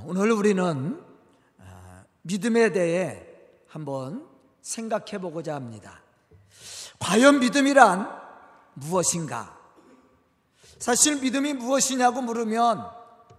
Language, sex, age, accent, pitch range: Korean, male, 40-59, native, 195-270 Hz